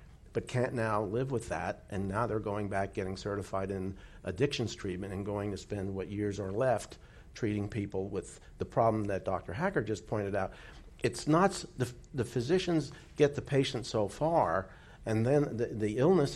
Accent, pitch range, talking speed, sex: American, 100-125 Hz, 185 wpm, male